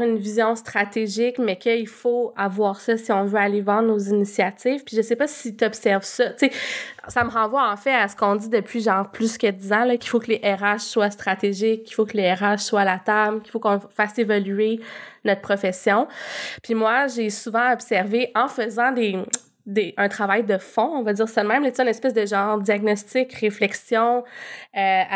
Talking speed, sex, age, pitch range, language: 210 wpm, female, 20-39, 205-245 Hz, French